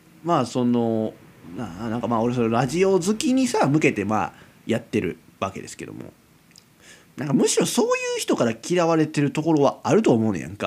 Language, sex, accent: Japanese, male, native